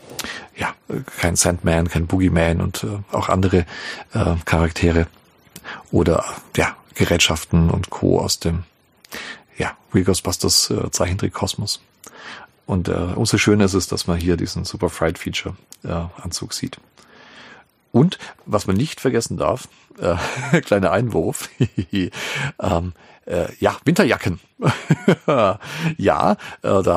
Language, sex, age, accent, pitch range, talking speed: German, male, 40-59, German, 90-105 Hz, 120 wpm